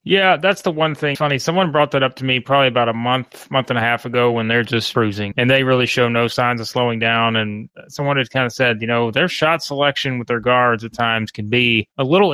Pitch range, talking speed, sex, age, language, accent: 115-135 Hz, 265 wpm, male, 30-49, English, American